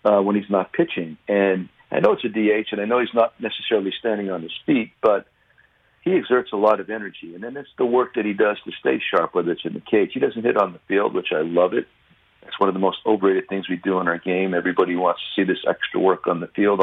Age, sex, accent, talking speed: 50-69, male, American, 270 wpm